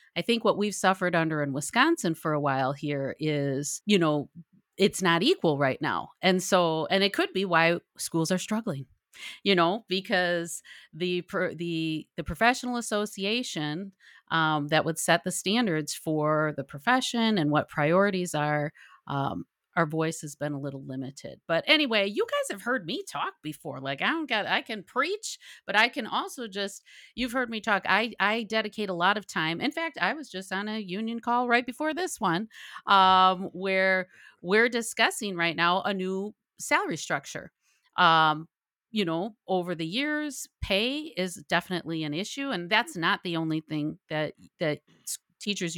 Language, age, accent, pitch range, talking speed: English, 40-59, American, 155-210 Hz, 175 wpm